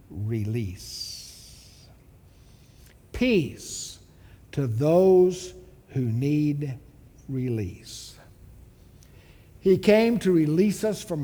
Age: 60-79